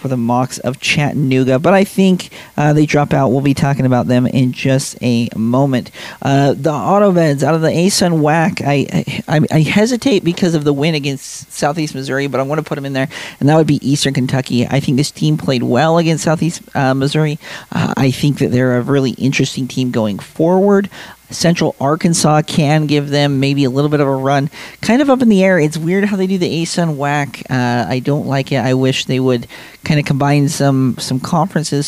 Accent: American